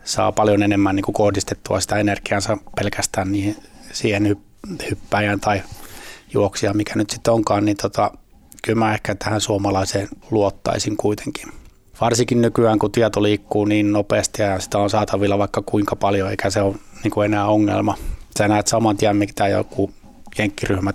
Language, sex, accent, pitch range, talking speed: Finnish, male, native, 100-110 Hz, 140 wpm